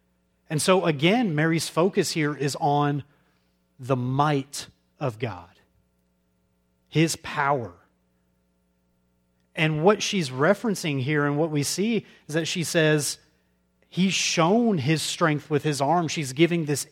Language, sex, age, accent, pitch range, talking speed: English, male, 30-49, American, 130-170 Hz, 130 wpm